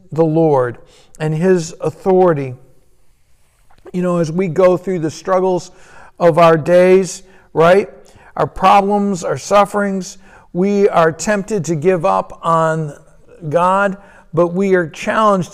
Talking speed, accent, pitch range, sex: 125 wpm, American, 165-190 Hz, male